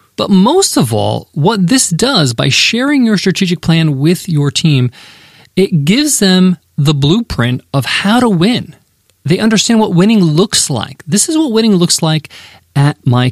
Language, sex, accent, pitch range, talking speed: English, male, American, 150-210 Hz, 170 wpm